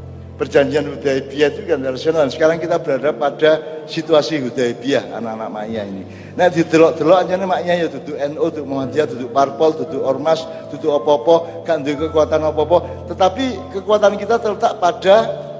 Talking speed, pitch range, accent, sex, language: 155 wpm, 145-190 Hz, native, male, Indonesian